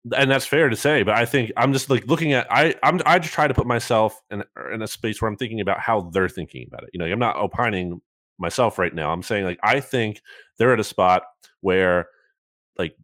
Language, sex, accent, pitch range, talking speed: English, male, American, 100-130 Hz, 240 wpm